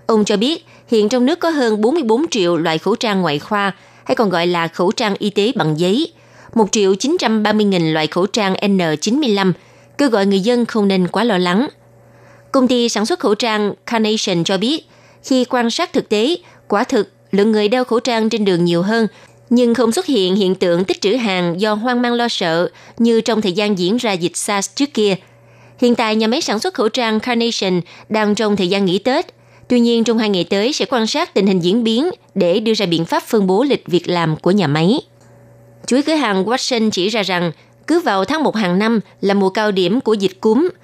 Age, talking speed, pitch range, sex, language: 20-39, 225 wpm, 185-235 Hz, female, Vietnamese